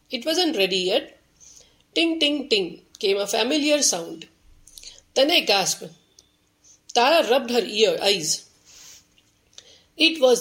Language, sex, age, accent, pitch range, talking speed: English, female, 40-59, Indian, 200-295 Hz, 110 wpm